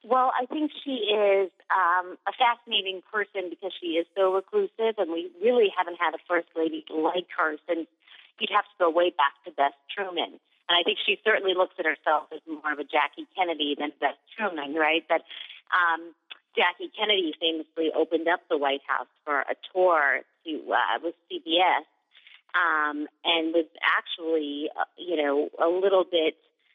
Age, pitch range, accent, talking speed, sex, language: 30-49, 155-205 Hz, American, 175 wpm, female, English